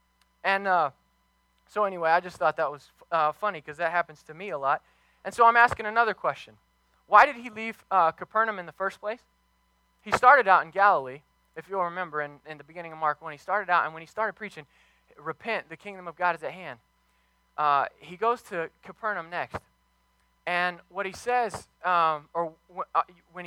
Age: 20-39